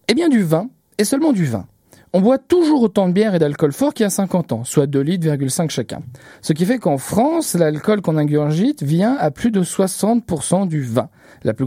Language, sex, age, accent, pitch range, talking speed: French, male, 40-59, French, 130-210 Hz, 220 wpm